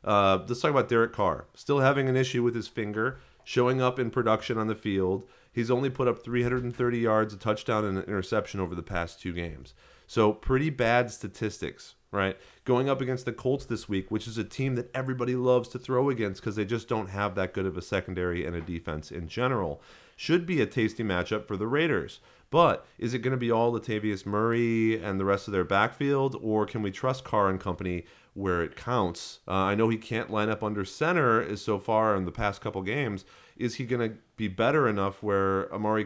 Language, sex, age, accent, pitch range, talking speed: English, male, 30-49, American, 95-120 Hz, 220 wpm